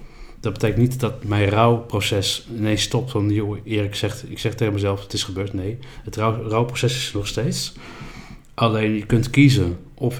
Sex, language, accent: male, Dutch, Dutch